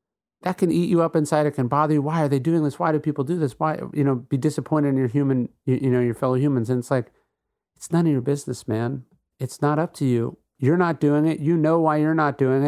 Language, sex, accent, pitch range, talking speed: English, male, American, 115-150 Hz, 275 wpm